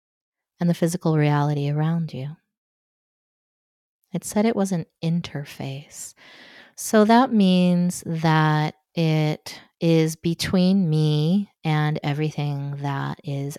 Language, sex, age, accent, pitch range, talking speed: English, female, 30-49, American, 145-180 Hz, 105 wpm